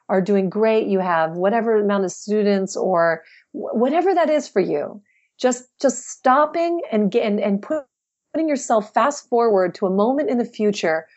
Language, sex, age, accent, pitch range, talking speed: English, female, 40-59, American, 200-250 Hz, 170 wpm